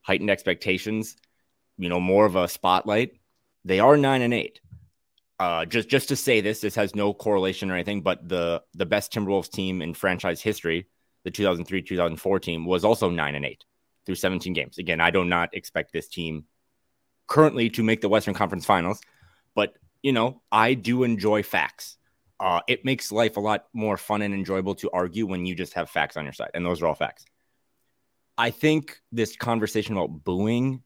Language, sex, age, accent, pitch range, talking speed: English, male, 20-39, American, 90-115 Hz, 190 wpm